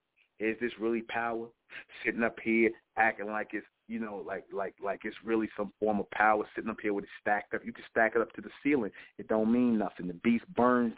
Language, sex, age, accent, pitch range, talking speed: English, male, 40-59, American, 100-115 Hz, 235 wpm